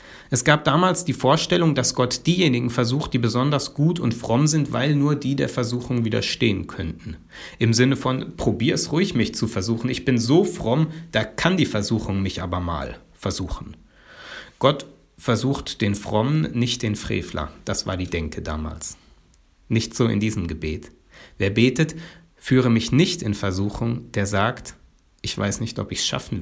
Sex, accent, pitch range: male, German, 105-135 Hz